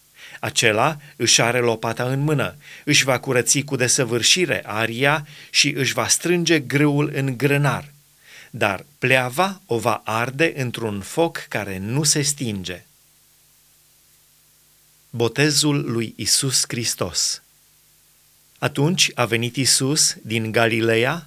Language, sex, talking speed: Romanian, male, 115 wpm